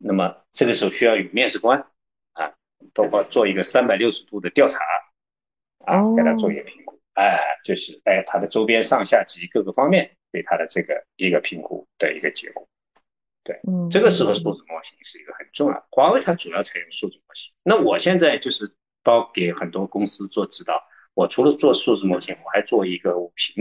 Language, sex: Chinese, male